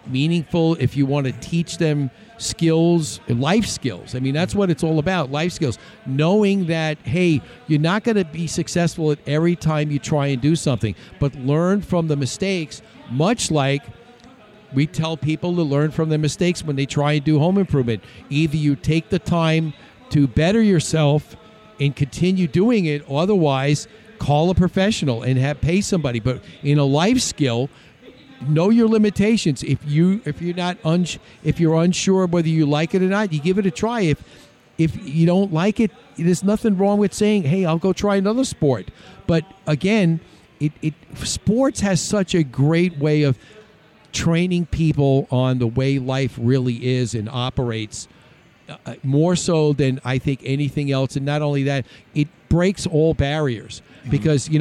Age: 50-69